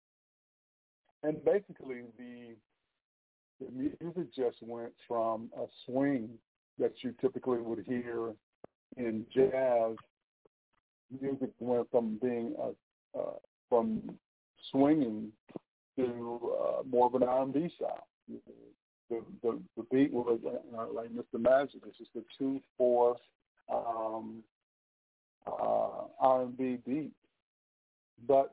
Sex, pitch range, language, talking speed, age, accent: male, 110-130 Hz, English, 100 wpm, 50-69, American